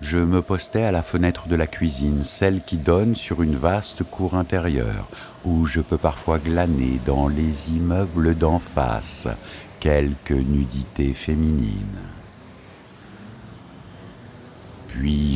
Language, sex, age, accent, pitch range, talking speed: French, male, 60-79, French, 75-95 Hz, 120 wpm